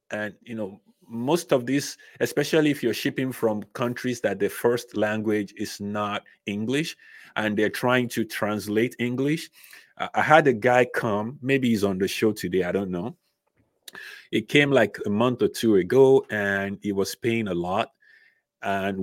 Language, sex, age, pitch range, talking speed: English, male, 30-49, 105-135 Hz, 170 wpm